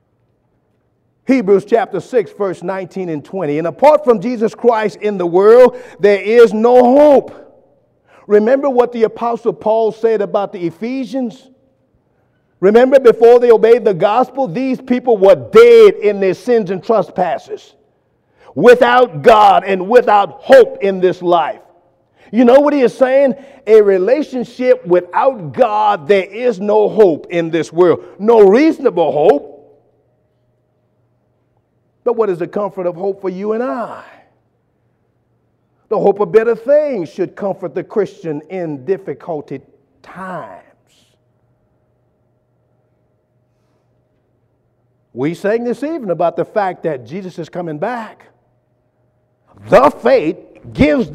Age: 50-69